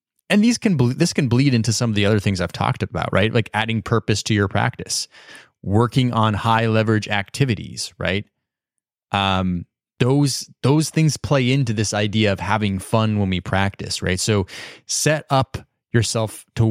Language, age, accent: English, 20-39, American